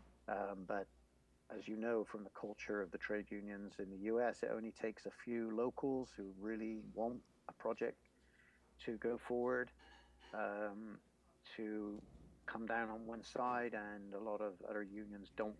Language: English